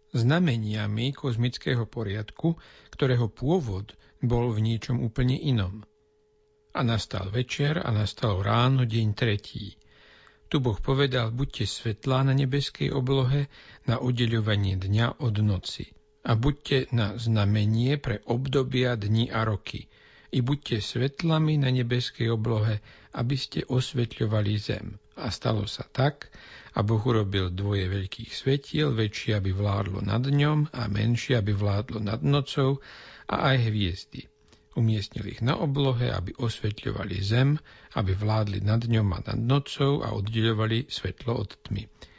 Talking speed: 130 wpm